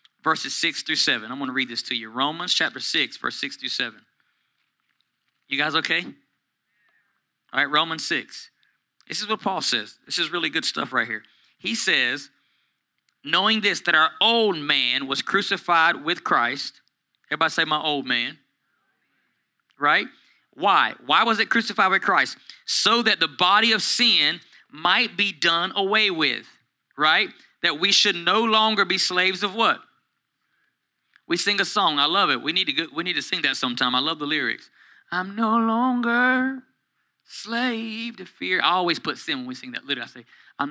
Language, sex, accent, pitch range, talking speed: English, male, American, 140-220 Hz, 180 wpm